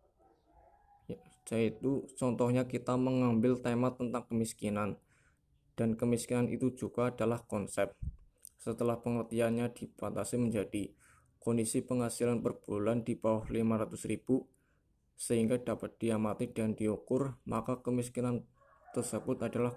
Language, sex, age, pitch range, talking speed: Indonesian, male, 20-39, 110-120 Hz, 95 wpm